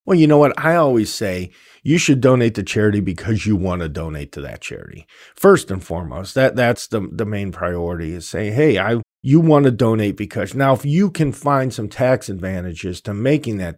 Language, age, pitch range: English, 50-69, 105-145 Hz